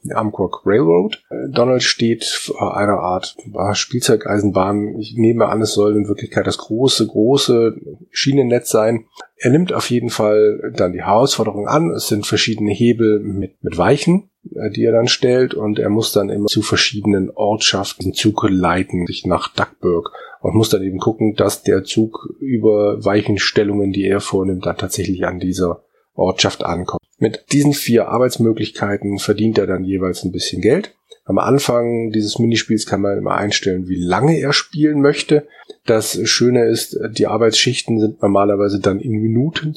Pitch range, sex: 100-115 Hz, male